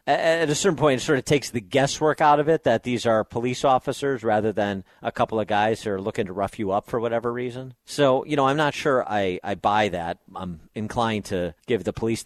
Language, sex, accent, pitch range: English, male, American, 90-115 Hz